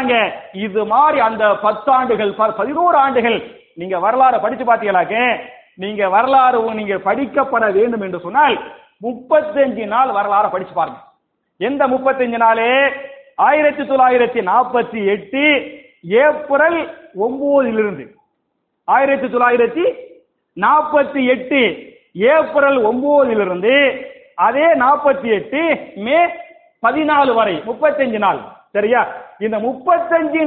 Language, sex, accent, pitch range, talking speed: English, male, Indian, 230-300 Hz, 75 wpm